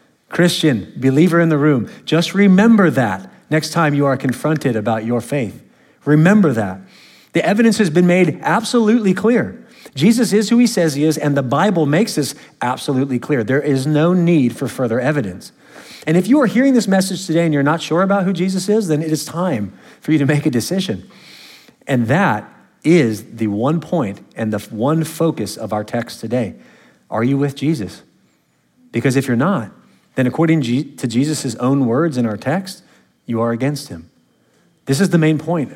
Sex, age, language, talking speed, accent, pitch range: male, 40-59, English, 190 wpm, American, 115-165 Hz